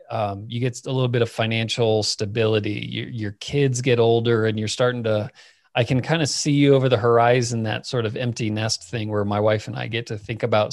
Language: English